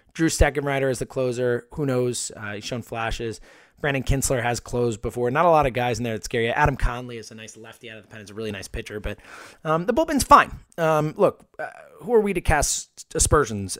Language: English